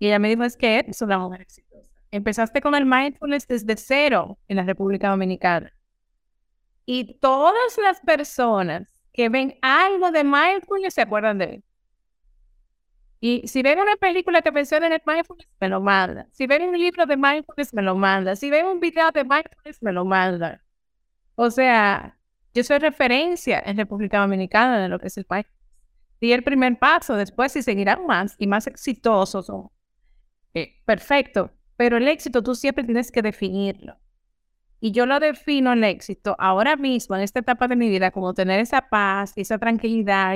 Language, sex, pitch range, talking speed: Spanish, female, 195-270 Hz, 180 wpm